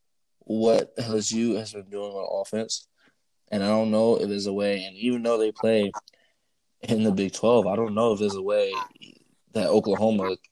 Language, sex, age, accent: English, male, 20-39, American